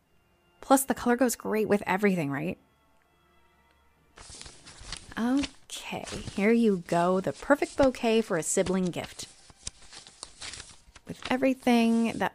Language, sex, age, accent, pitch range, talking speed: English, female, 20-39, American, 190-300 Hz, 105 wpm